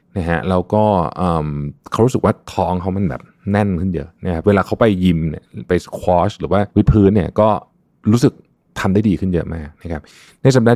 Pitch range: 85-105 Hz